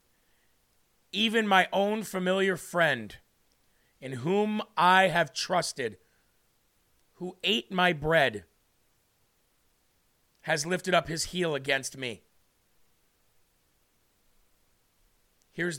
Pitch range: 135-215 Hz